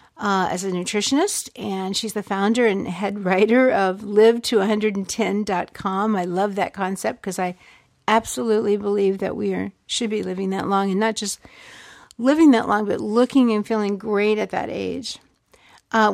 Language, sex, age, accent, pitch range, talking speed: English, female, 50-69, American, 195-235 Hz, 165 wpm